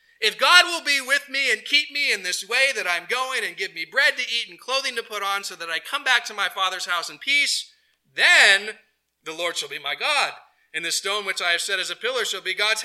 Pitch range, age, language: 180-255 Hz, 40-59, English